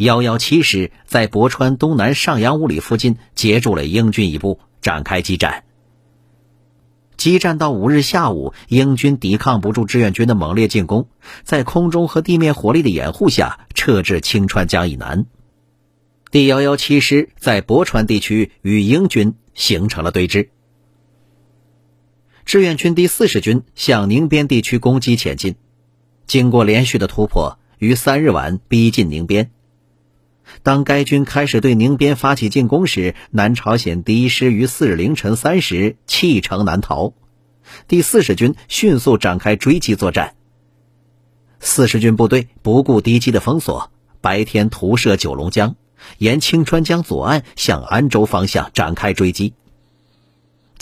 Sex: male